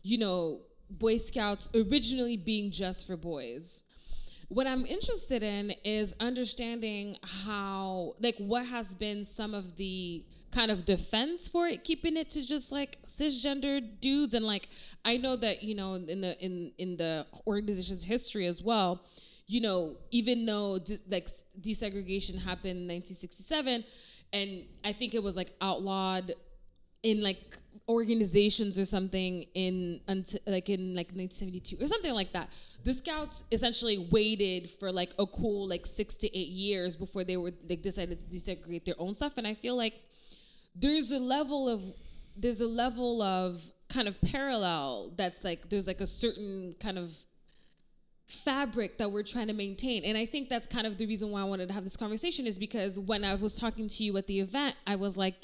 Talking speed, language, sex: 175 wpm, English, female